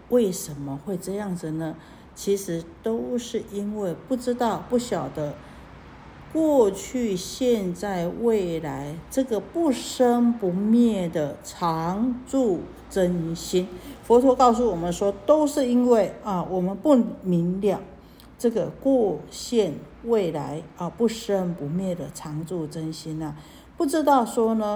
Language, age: Chinese, 50-69